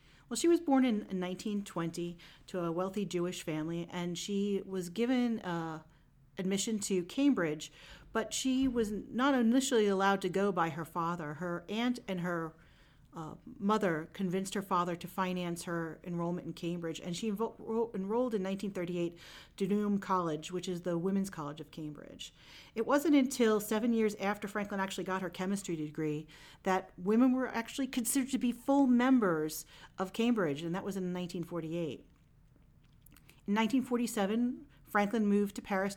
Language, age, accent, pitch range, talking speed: English, 40-59, American, 170-215 Hz, 160 wpm